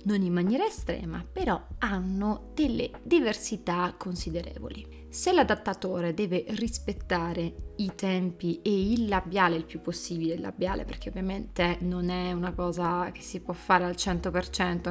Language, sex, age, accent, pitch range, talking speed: Italian, female, 20-39, native, 175-205 Hz, 140 wpm